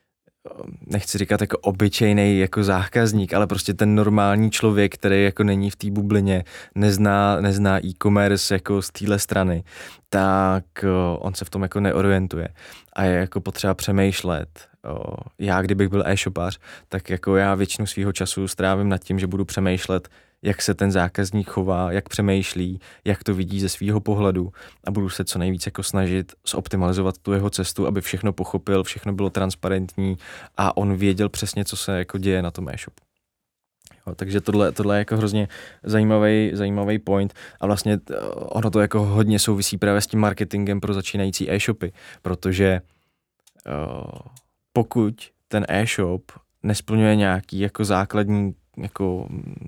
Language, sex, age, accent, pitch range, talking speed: Czech, male, 20-39, native, 95-105 Hz, 155 wpm